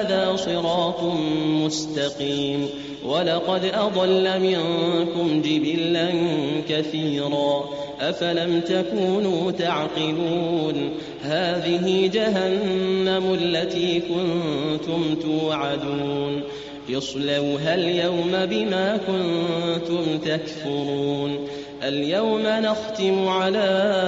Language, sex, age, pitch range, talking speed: Arabic, male, 30-49, 155-185 Hz, 55 wpm